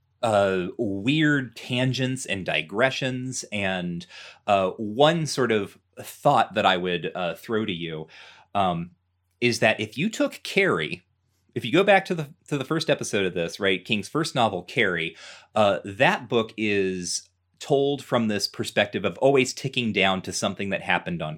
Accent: American